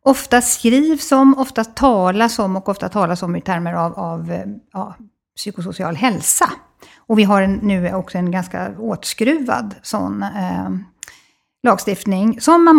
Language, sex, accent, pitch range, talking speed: Swedish, female, native, 195-260 Hz, 145 wpm